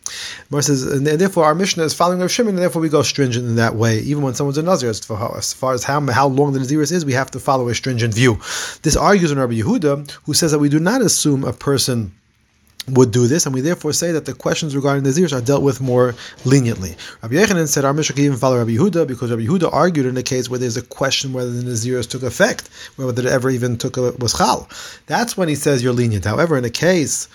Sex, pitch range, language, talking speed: male, 120-150 Hz, English, 250 wpm